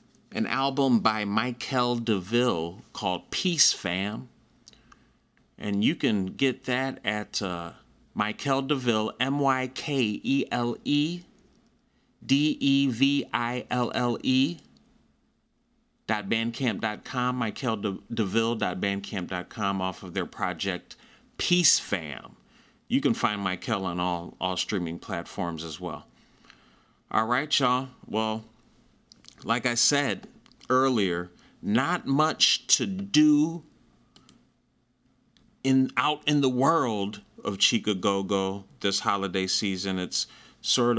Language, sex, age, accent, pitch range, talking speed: English, male, 30-49, American, 100-135 Hz, 95 wpm